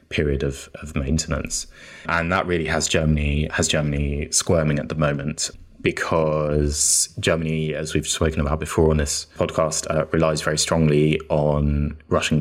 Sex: male